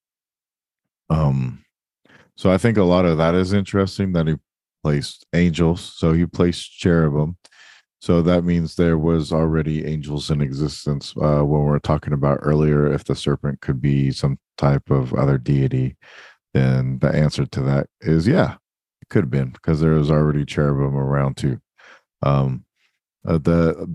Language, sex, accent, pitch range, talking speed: English, male, American, 75-85 Hz, 165 wpm